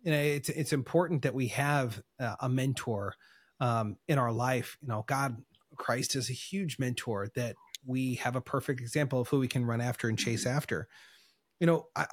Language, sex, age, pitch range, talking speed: English, male, 30-49, 125-150 Hz, 200 wpm